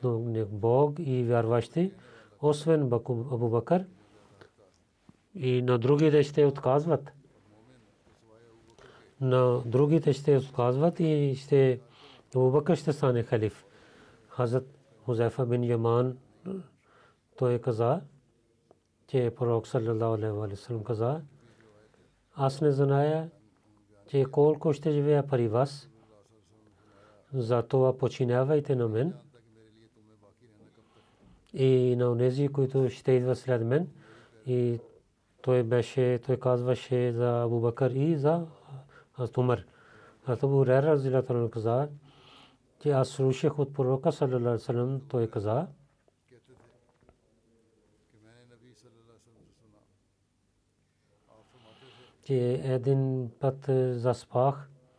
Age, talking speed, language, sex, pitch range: 40-59, 90 wpm, Bulgarian, male, 115-140 Hz